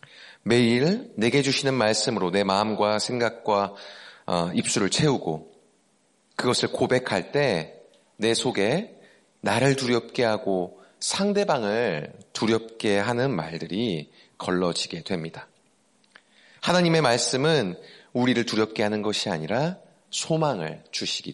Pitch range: 105-155 Hz